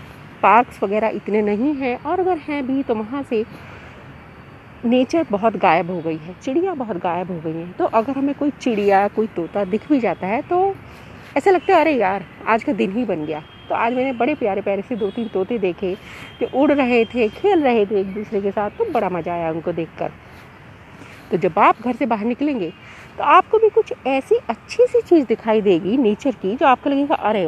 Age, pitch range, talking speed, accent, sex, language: 40-59, 195-310 Hz, 215 wpm, native, female, Hindi